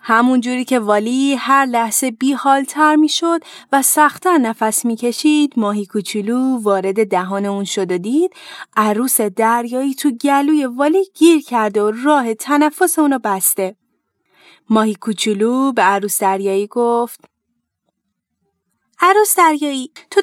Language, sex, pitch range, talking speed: Persian, female, 225-310 Hz, 120 wpm